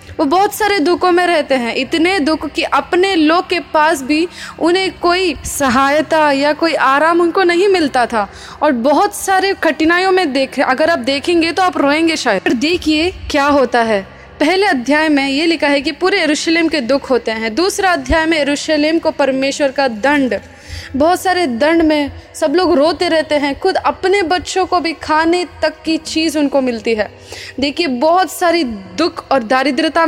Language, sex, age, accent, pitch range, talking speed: Hindi, female, 20-39, native, 275-345 Hz, 180 wpm